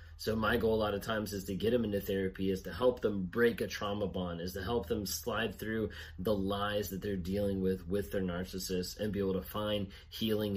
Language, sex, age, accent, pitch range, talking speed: English, male, 30-49, American, 90-105 Hz, 240 wpm